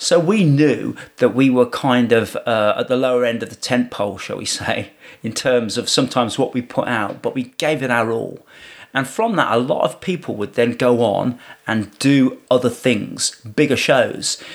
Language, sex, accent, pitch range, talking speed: English, male, British, 115-140 Hz, 210 wpm